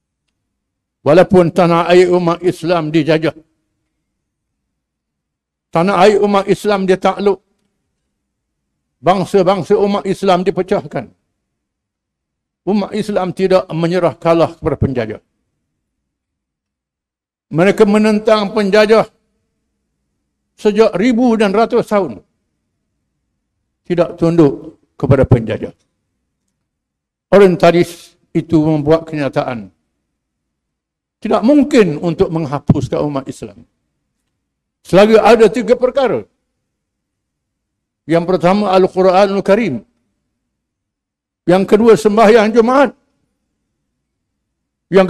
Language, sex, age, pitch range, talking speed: English, male, 60-79, 155-200 Hz, 75 wpm